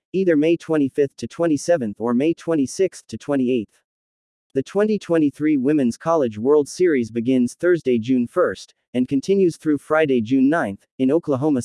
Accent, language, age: American, English, 40-59